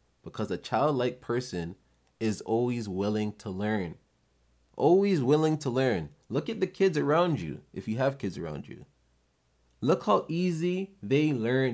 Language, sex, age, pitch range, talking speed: English, male, 20-39, 95-140 Hz, 155 wpm